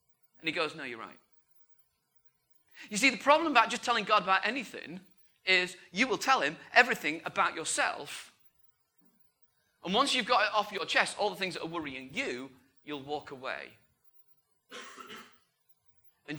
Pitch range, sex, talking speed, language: 140-230 Hz, male, 155 wpm, English